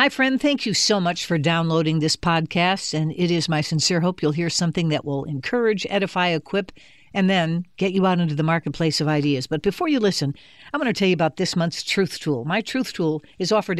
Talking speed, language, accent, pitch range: 230 wpm, English, American, 160-200 Hz